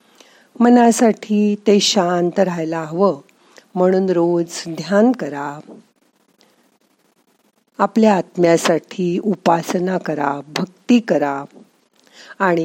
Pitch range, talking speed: 170-225 Hz, 50 wpm